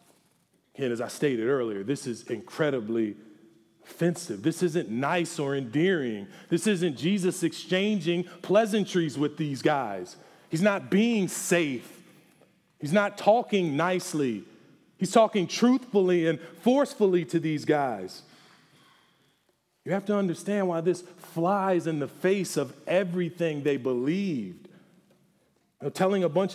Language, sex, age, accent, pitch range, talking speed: English, male, 40-59, American, 165-200 Hz, 125 wpm